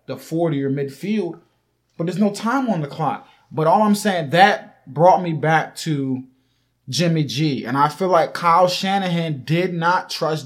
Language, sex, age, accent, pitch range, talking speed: English, male, 20-39, American, 140-195 Hz, 180 wpm